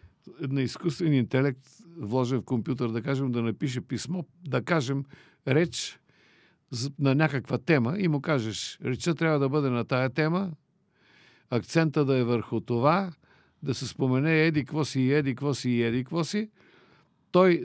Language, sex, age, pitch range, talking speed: Bulgarian, male, 50-69, 125-165 Hz, 155 wpm